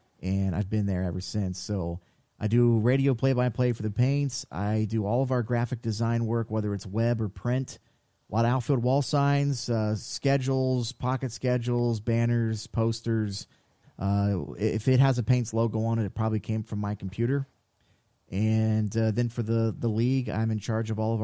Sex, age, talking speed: male, 30-49, 190 wpm